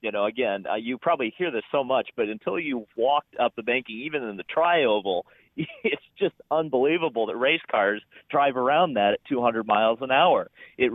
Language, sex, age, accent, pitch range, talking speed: English, male, 40-59, American, 105-125 Hz, 195 wpm